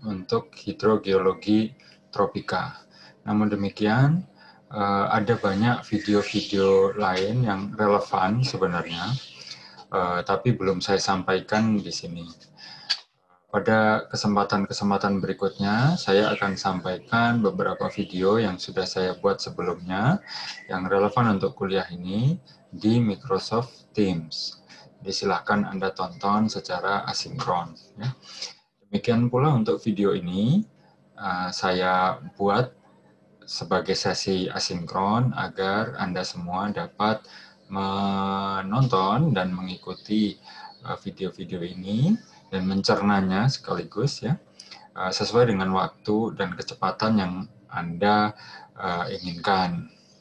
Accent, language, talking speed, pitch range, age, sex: native, Indonesian, 90 wpm, 95-110 Hz, 20-39, male